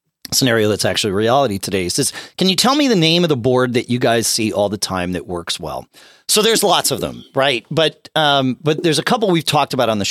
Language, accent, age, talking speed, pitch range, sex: English, American, 40-59, 250 wpm, 100-150 Hz, male